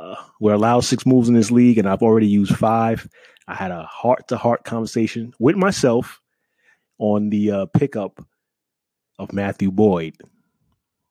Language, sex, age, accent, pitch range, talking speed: English, male, 30-49, American, 100-120 Hz, 140 wpm